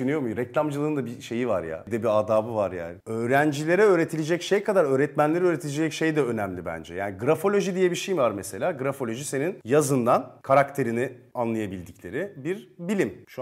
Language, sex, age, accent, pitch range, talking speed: Turkish, male, 30-49, native, 110-145 Hz, 165 wpm